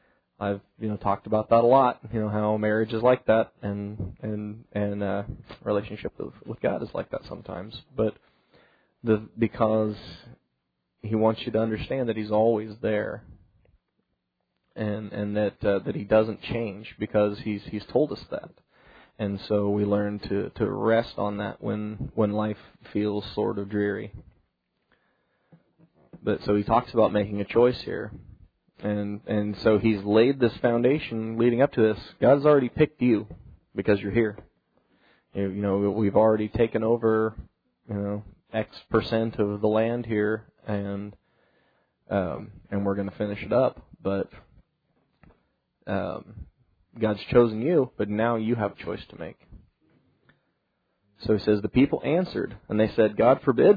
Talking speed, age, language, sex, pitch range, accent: 160 wpm, 20-39, English, male, 100-110 Hz, American